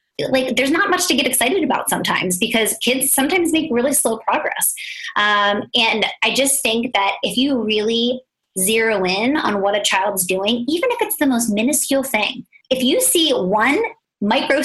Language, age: English, 20-39